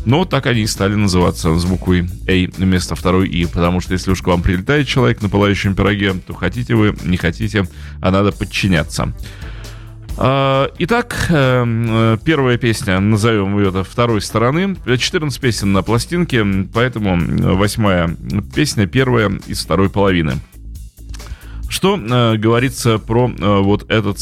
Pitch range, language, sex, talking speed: 95-120 Hz, Russian, male, 130 wpm